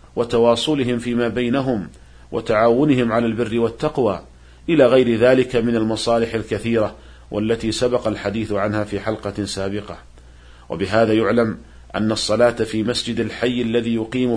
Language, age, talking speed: Arabic, 40-59, 120 wpm